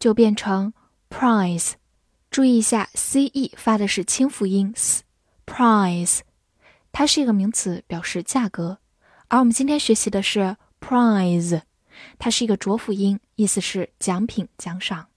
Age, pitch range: 10-29, 195-250 Hz